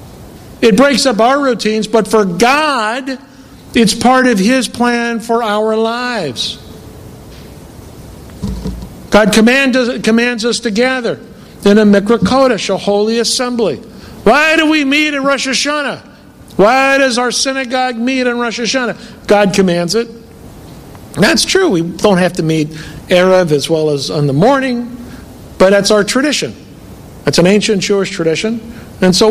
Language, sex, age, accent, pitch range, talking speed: English, male, 60-79, American, 200-250 Hz, 145 wpm